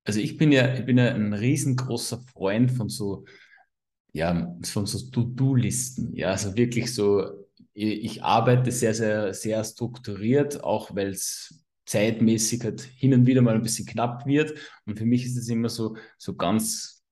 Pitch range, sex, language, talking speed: 105-125 Hz, male, German, 170 wpm